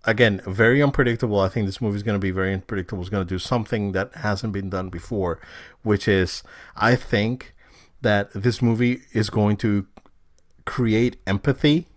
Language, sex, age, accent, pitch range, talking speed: English, male, 30-49, American, 95-130 Hz, 175 wpm